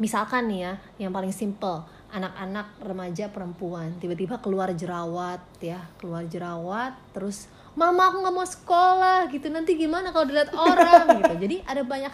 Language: Indonesian